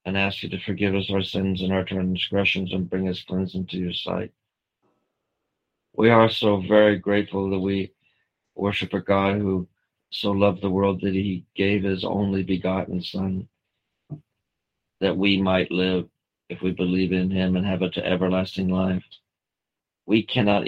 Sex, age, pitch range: male, 50-69, 90-100 Hz